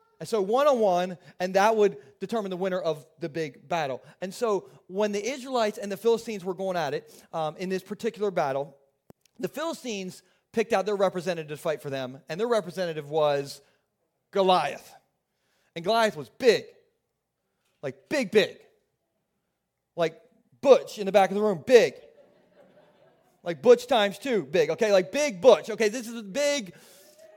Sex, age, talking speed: male, 30-49, 160 wpm